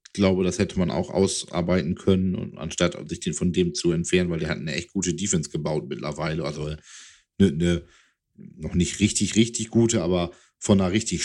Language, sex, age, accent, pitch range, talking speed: German, male, 50-69, German, 85-105 Hz, 185 wpm